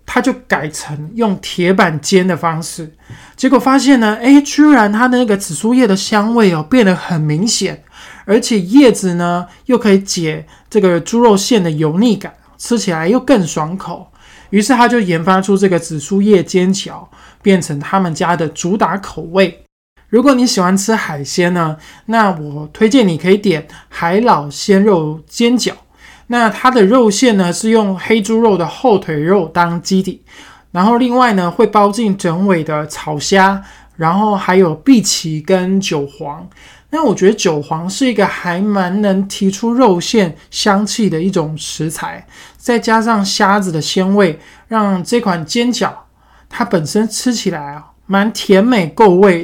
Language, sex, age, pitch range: Chinese, male, 20-39, 170-220 Hz